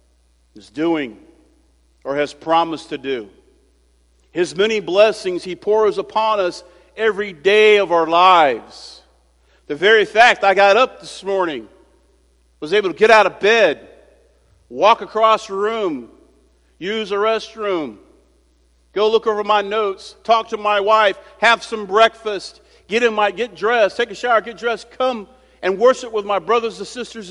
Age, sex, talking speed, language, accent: 50-69, male, 155 wpm, English, American